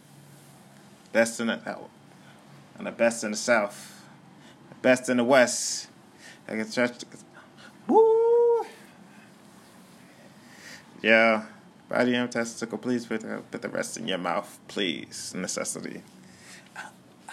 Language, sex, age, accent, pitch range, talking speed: English, male, 20-39, American, 110-145 Hz, 115 wpm